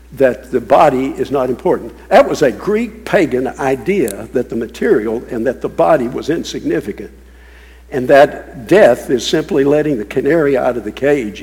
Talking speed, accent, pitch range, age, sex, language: 175 wpm, American, 115-185 Hz, 60-79, male, English